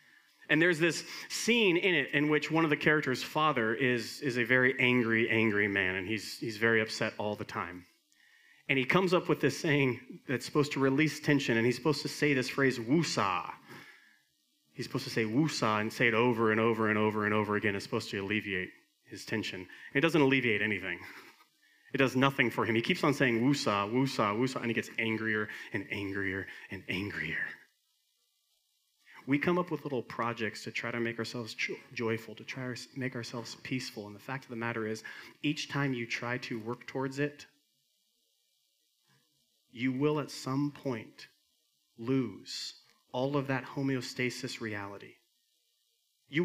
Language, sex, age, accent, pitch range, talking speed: English, male, 30-49, American, 115-150 Hz, 180 wpm